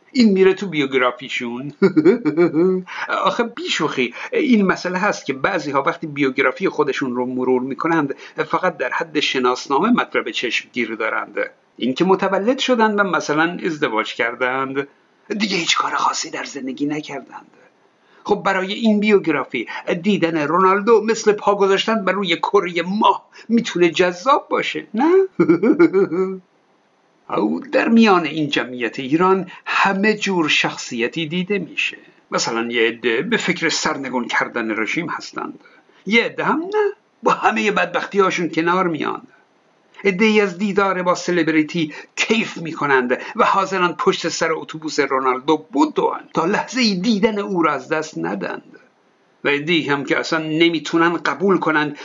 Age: 60-79